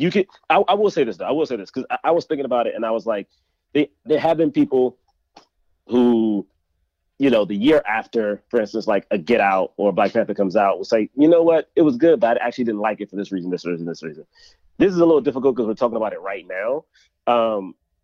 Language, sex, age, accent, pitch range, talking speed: English, male, 30-49, American, 100-145 Hz, 265 wpm